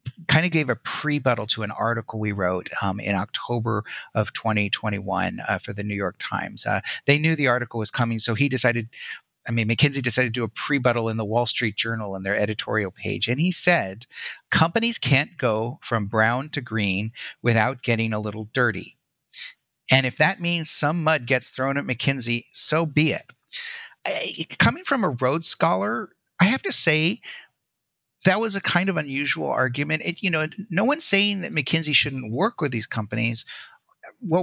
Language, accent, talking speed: English, American, 185 wpm